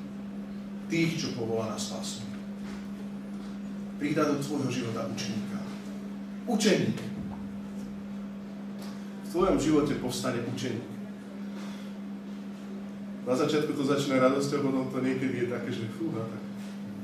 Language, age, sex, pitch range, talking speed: Slovak, 40-59, male, 130-205 Hz, 100 wpm